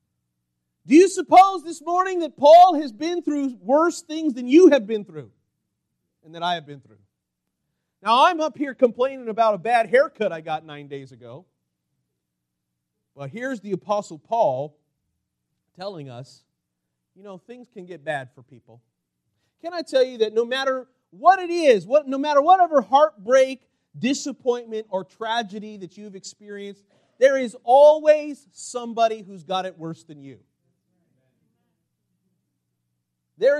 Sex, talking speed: male, 150 wpm